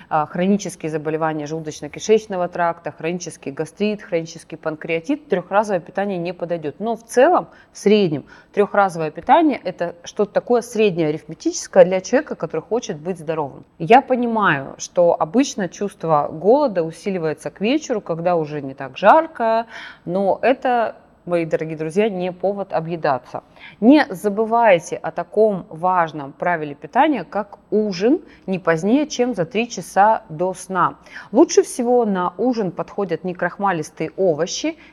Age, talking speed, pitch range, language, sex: 30-49, 130 wpm, 165-225 Hz, Russian, female